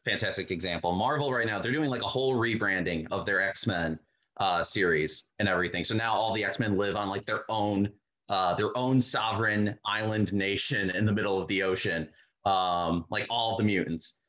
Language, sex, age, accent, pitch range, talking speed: English, male, 30-49, American, 100-135 Hz, 190 wpm